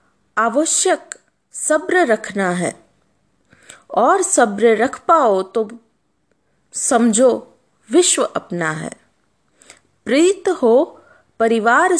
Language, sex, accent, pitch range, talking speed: Hindi, female, native, 215-320 Hz, 80 wpm